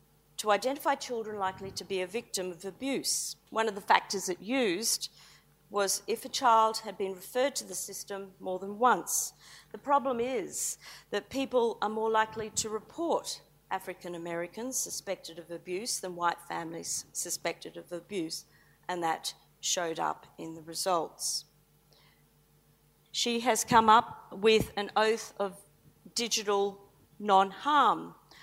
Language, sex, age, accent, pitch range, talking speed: English, female, 50-69, Australian, 180-225 Hz, 140 wpm